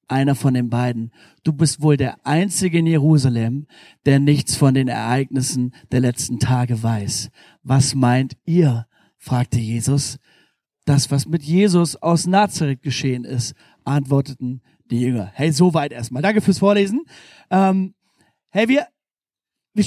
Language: German